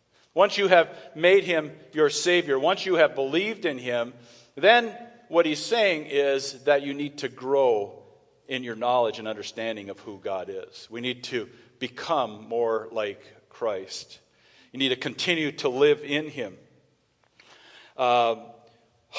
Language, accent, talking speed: English, American, 150 wpm